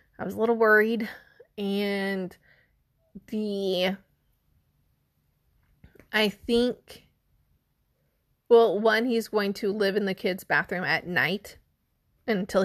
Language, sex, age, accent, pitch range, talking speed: English, female, 20-39, American, 195-225 Hz, 105 wpm